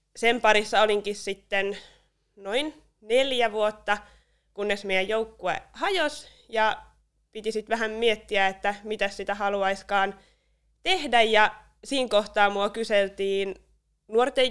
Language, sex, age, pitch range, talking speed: Finnish, female, 20-39, 200-235 Hz, 110 wpm